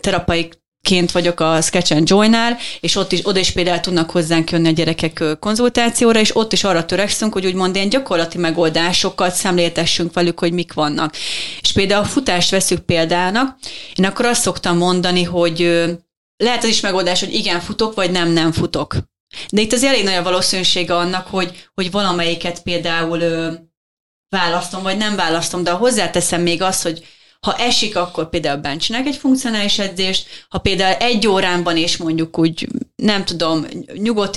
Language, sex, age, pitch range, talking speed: Hungarian, female, 30-49, 170-205 Hz, 165 wpm